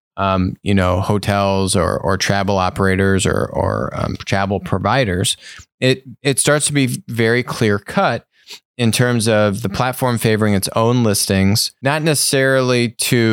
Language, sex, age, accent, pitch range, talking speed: English, male, 30-49, American, 100-115 Hz, 150 wpm